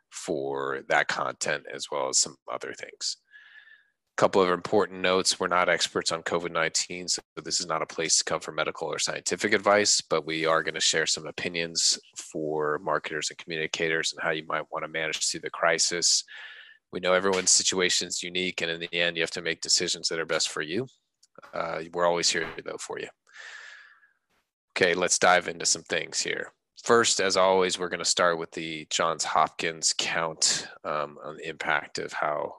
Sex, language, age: male, English, 30-49